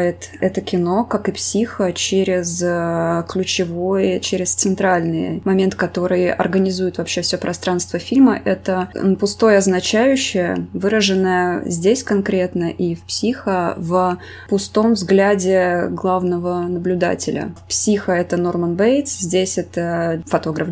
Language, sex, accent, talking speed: Russian, female, native, 110 wpm